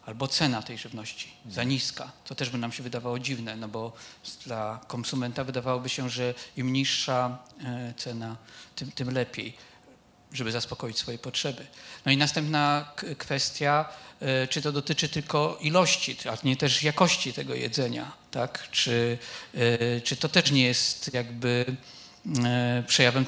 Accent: native